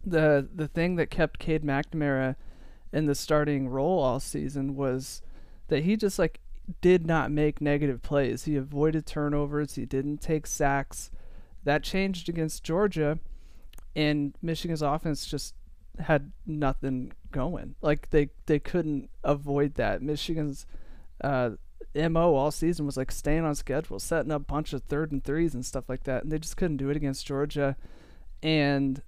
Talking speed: 160 wpm